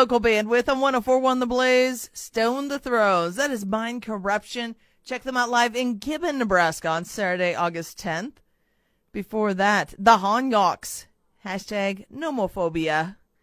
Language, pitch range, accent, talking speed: English, 210-260 Hz, American, 140 wpm